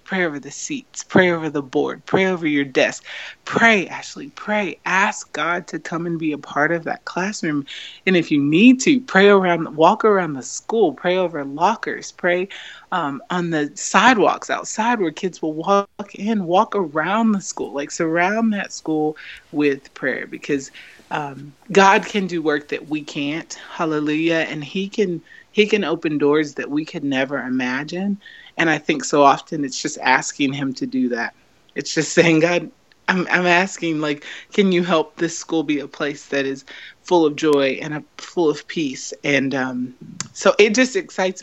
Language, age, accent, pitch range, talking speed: English, 30-49, American, 150-190 Hz, 185 wpm